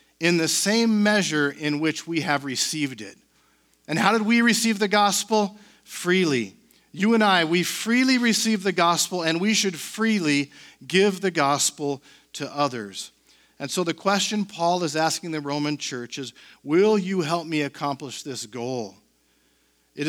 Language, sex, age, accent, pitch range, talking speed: English, male, 50-69, American, 140-185 Hz, 160 wpm